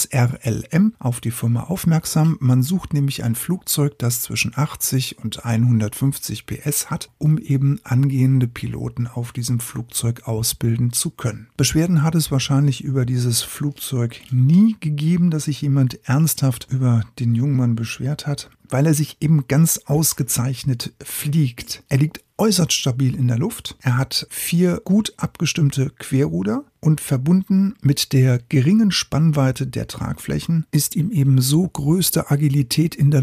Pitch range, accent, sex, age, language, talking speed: 125-155 Hz, German, male, 50-69, German, 145 wpm